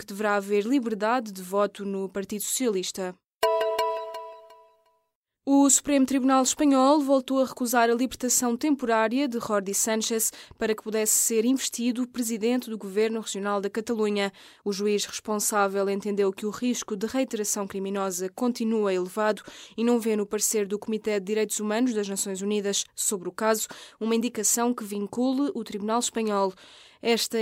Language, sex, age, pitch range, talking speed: Portuguese, female, 20-39, 200-235 Hz, 150 wpm